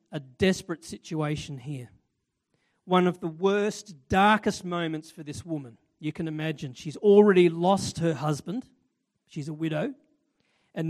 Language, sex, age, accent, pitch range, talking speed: English, male, 40-59, Australian, 165-205 Hz, 140 wpm